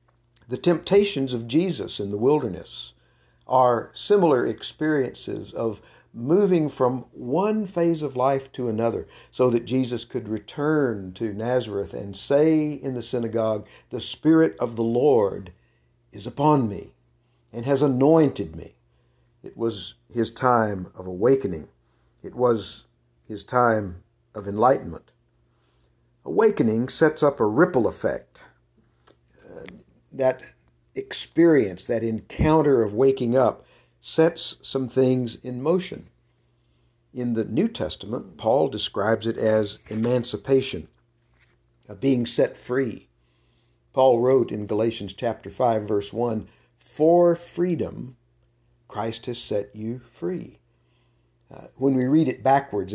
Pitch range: 110-135 Hz